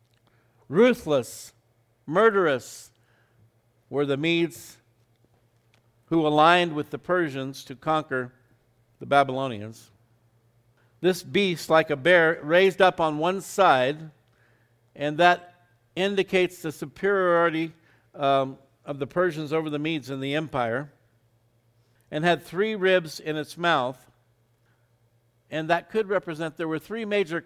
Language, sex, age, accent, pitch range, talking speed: English, male, 50-69, American, 120-165 Hz, 120 wpm